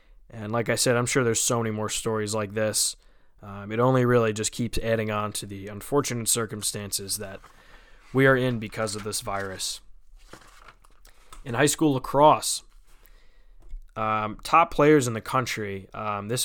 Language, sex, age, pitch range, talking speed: English, male, 20-39, 105-125 Hz, 165 wpm